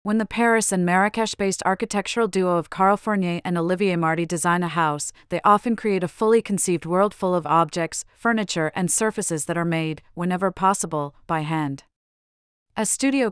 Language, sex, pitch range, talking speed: English, female, 165-200 Hz, 165 wpm